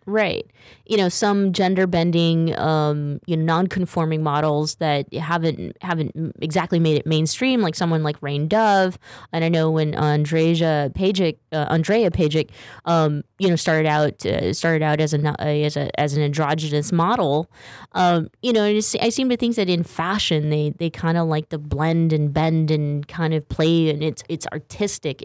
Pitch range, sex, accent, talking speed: 150-175 Hz, female, American, 190 wpm